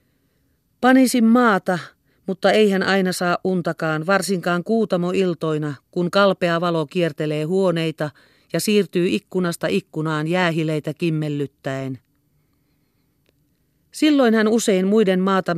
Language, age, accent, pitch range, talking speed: Finnish, 40-59, native, 155-200 Hz, 100 wpm